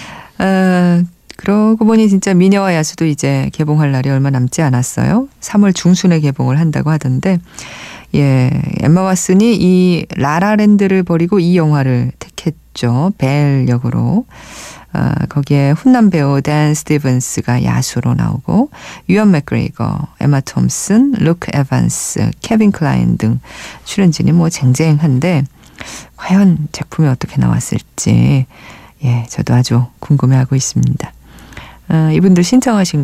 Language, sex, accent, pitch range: Korean, female, native, 130-185 Hz